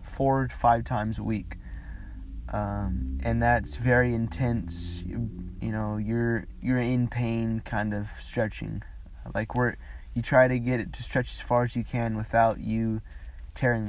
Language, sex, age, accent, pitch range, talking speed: English, male, 20-39, American, 95-120 Hz, 165 wpm